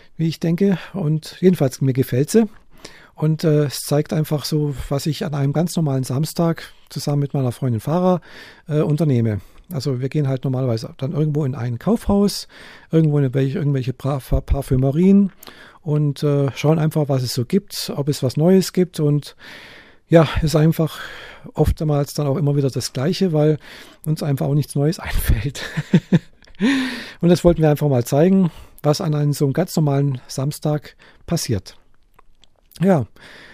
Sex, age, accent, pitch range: male, 50-69, German, 140-175 Hz